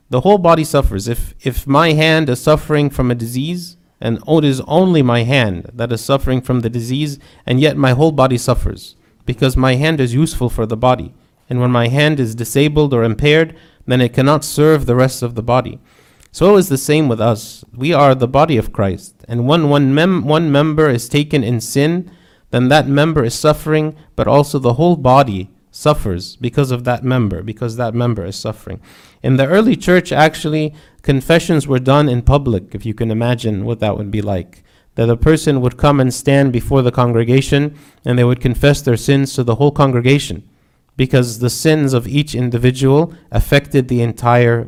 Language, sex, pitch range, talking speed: English, male, 115-145 Hz, 195 wpm